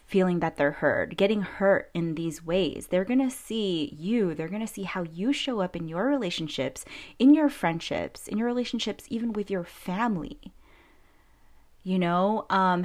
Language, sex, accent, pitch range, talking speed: English, female, American, 160-200 Hz, 170 wpm